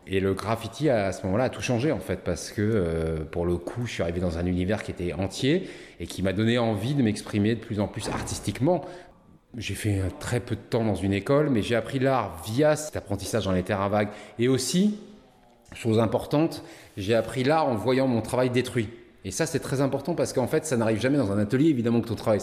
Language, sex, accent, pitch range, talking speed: French, male, French, 105-140 Hz, 230 wpm